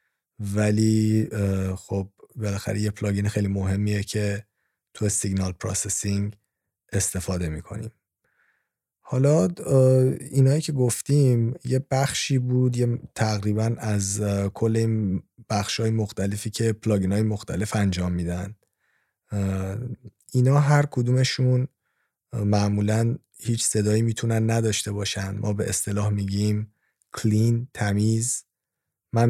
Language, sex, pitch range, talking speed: Persian, male, 100-125 Hz, 100 wpm